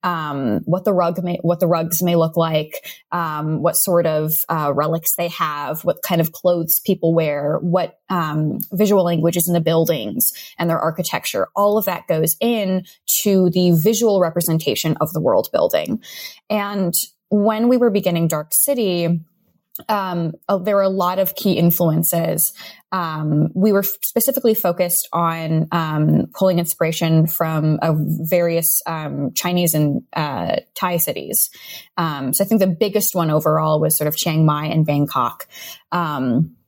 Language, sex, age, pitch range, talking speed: English, female, 10-29, 160-200 Hz, 160 wpm